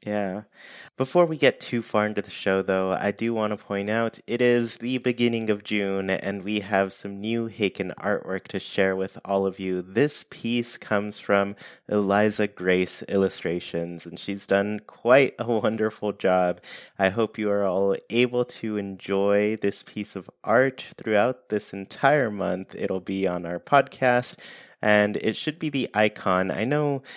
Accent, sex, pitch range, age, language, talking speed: American, male, 95-115 Hz, 20-39, English, 170 wpm